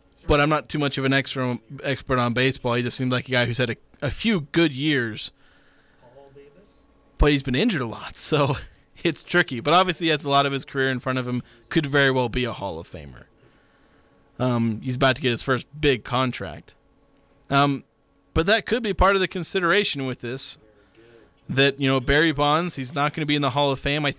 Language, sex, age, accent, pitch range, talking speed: English, male, 20-39, American, 125-150 Hz, 220 wpm